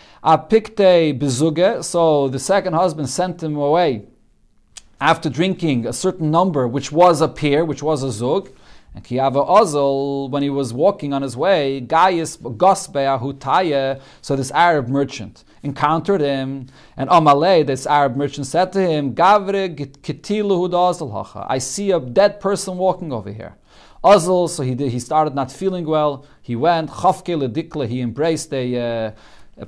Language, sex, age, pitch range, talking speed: English, male, 40-59, 140-185 Hz, 150 wpm